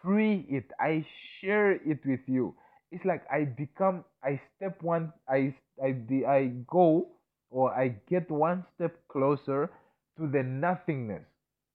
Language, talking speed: English, 140 wpm